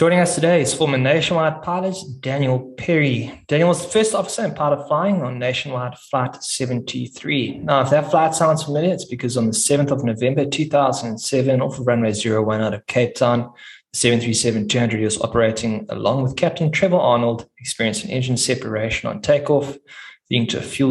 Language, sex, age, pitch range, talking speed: English, male, 20-39, 110-145 Hz, 180 wpm